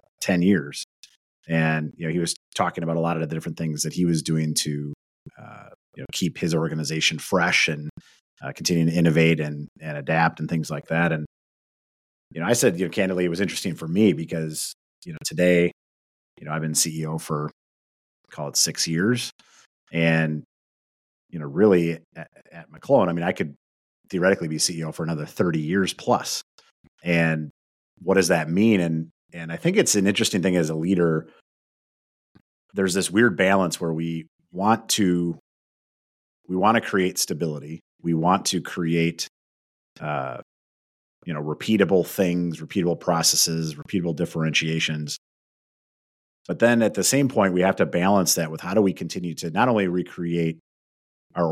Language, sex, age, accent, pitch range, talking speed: English, male, 30-49, American, 75-90 Hz, 170 wpm